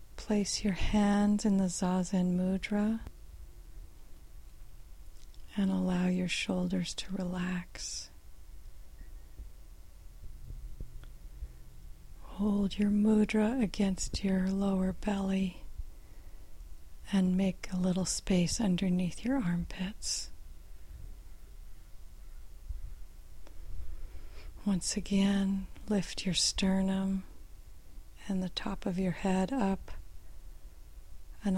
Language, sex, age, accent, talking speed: English, female, 40-59, American, 80 wpm